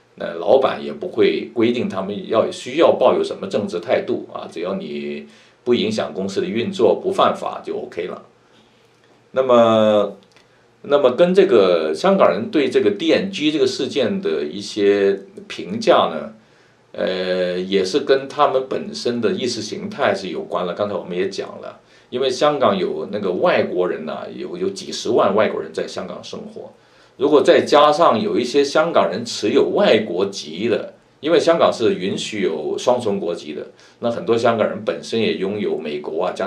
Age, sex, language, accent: 50-69, male, Chinese, native